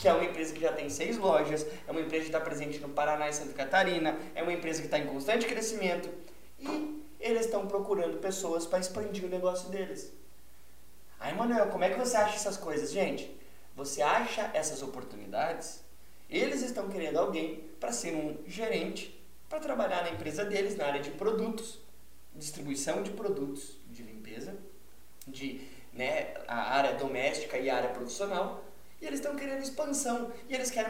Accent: Brazilian